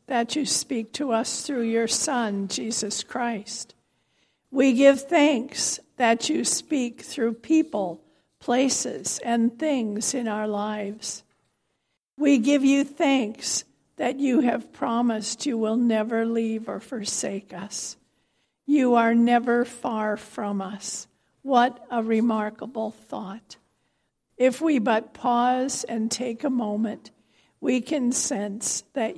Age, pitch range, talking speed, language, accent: 60-79, 215-255 Hz, 125 wpm, English, American